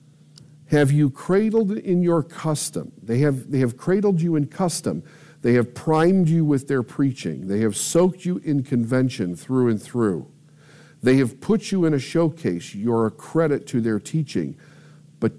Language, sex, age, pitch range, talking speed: English, male, 50-69, 115-155 Hz, 170 wpm